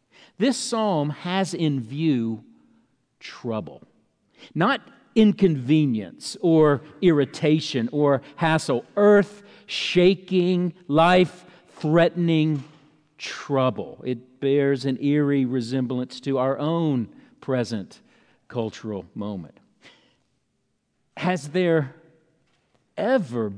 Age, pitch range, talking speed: 50-69, 135-185 Hz, 80 wpm